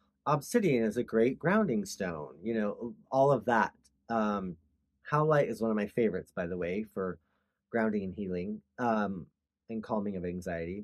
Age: 30-49